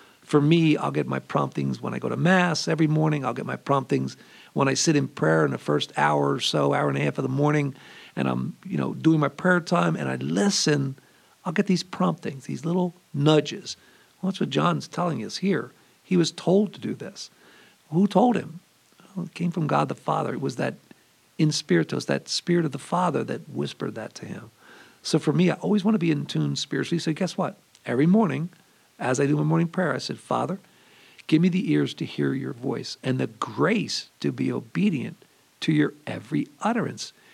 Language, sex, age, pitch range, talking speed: English, male, 50-69, 140-185 Hz, 215 wpm